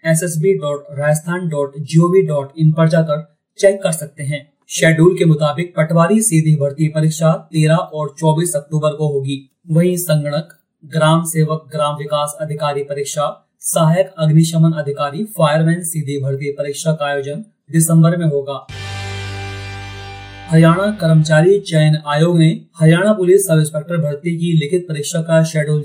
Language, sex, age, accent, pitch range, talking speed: Hindi, male, 30-49, native, 145-175 Hz, 140 wpm